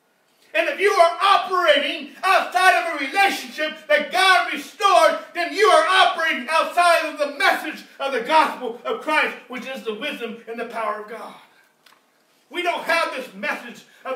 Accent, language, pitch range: American, English, 215-345 Hz